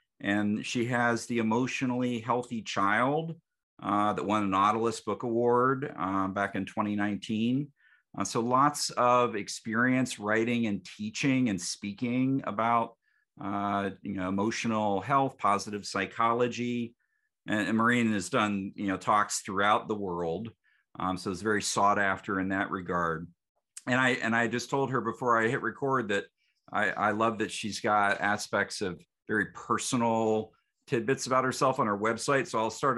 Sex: male